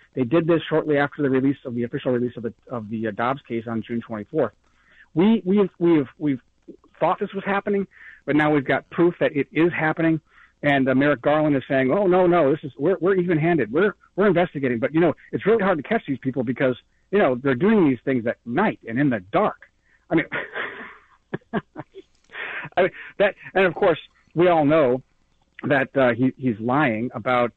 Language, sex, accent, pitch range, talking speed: English, male, American, 120-160 Hz, 205 wpm